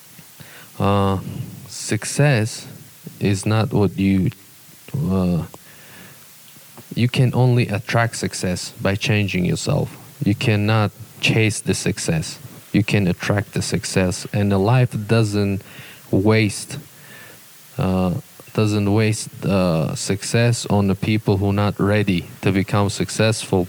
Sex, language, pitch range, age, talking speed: male, English, 100-135 Hz, 20-39, 115 wpm